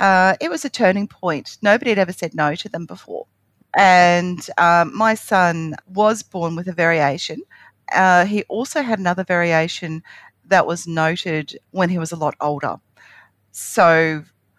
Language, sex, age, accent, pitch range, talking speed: English, female, 40-59, Australian, 155-195 Hz, 160 wpm